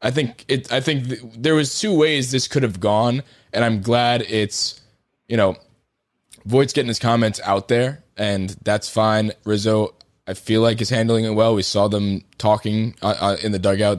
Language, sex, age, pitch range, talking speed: English, male, 20-39, 105-130 Hz, 195 wpm